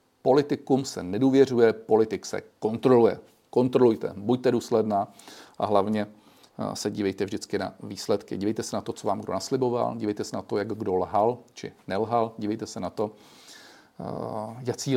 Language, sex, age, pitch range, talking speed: Czech, male, 40-59, 105-120 Hz, 150 wpm